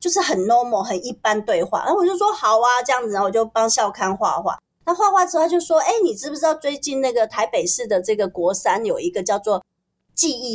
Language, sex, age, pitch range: Chinese, female, 30-49, 205-335 Hz